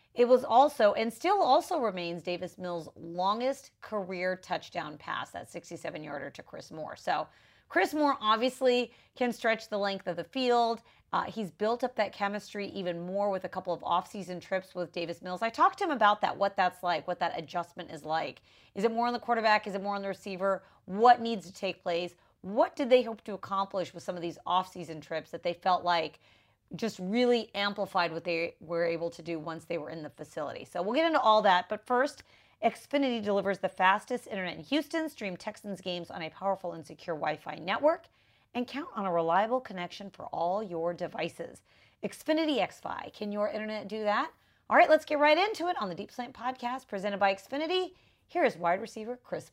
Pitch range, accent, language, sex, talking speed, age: 175-240 Hz, American, English, female, 205 wpm, 30-49